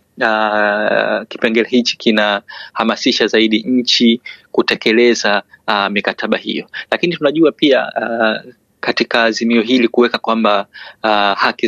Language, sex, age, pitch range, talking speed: Swahili, male, 30-49, 105-120 Hz, 120 wpm